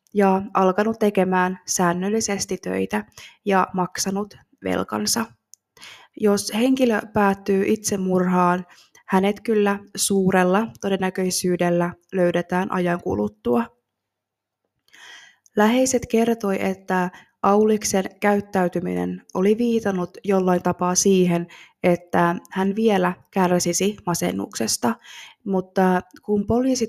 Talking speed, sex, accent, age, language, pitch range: 85 wpm, female, native, 20-39, Finnish, 180-205 Hz